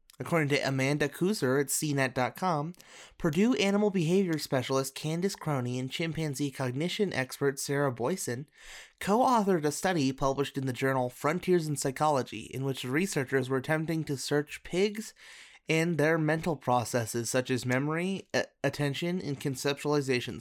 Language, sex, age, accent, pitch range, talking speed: English, male, 30-49, American, 130-165 Hz, 135 wpm